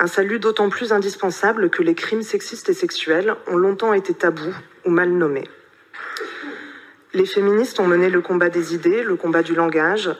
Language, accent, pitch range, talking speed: French, French, 175-225 Hz, 175 wpm